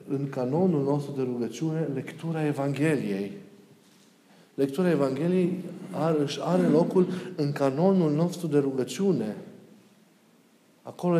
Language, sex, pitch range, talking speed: Romanian, male, 135-165 Hz, 95 wpm